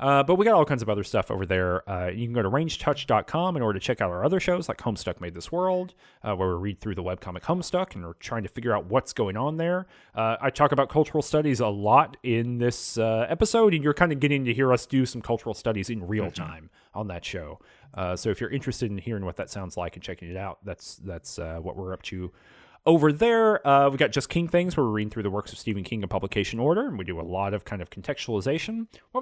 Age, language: 30-49, English